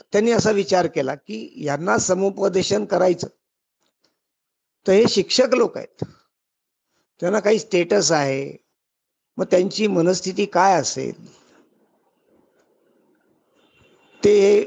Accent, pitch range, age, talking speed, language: native, 175-215 Hz, 50-69, 95 wpm, Marathi